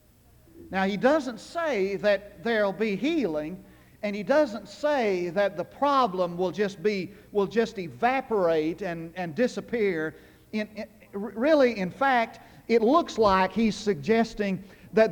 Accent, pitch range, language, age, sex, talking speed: American, 180-245 Hz, English, 50-69, male, 145 wpm